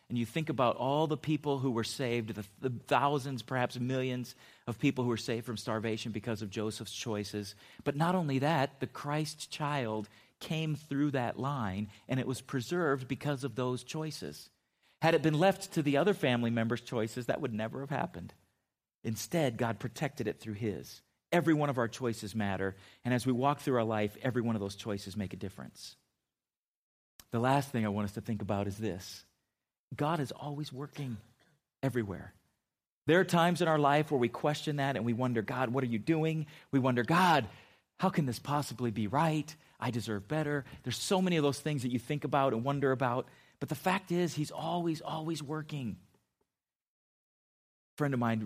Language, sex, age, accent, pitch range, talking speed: English, male, 40-59, American, 110-145 Hz, 195 wpm